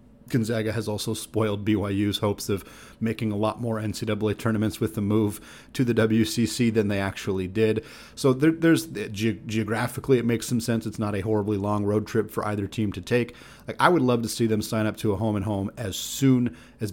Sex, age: male, 30-49